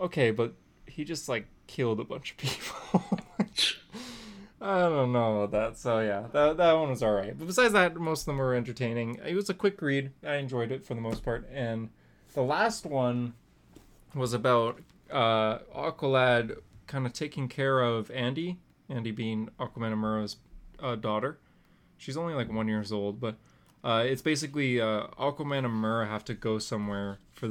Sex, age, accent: male, 20-39, American